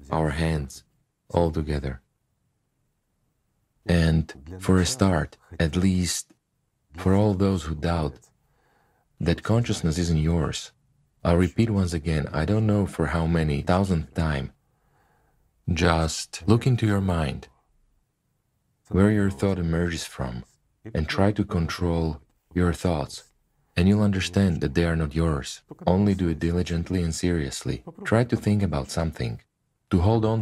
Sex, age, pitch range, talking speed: male, 40-59, 80-100 Hz, 135 wpm